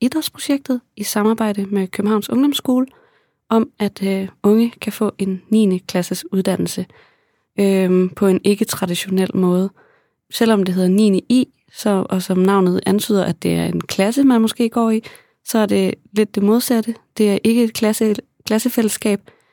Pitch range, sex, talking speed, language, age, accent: 195-230 Hz, female, 160 wpm, Danish, 20-39, native